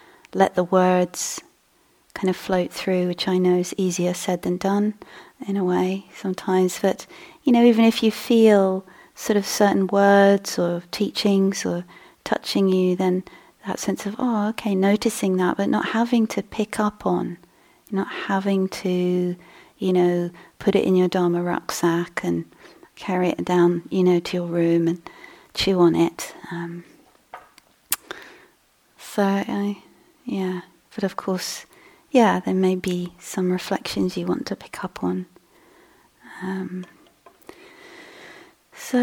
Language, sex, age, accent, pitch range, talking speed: English, female, 30-49, British, 180-225 Hz, 145 wpm